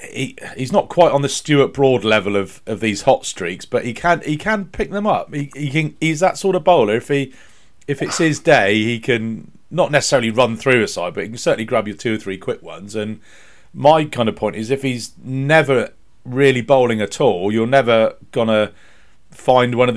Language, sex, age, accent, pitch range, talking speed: English, male, 40-59, British, 100-150 Hz, 220 wpm